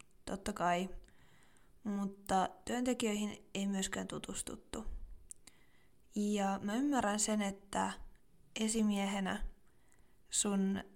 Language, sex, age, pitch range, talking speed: Finnish, female, 20-39, 205-225 Hz, 75 wpm